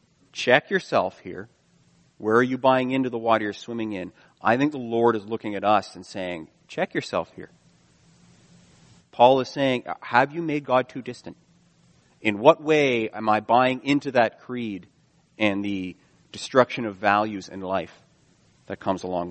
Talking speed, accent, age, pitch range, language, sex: 170 wpm, American, 40-59, 100-130 Hz, English, male